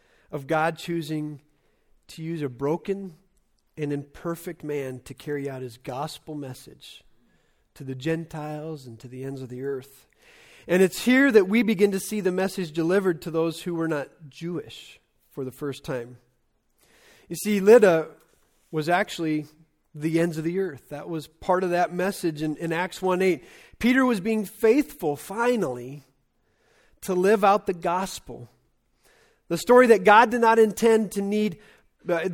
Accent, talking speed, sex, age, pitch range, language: American, 160 wpm, male, 40-59, 155-210 Hz, English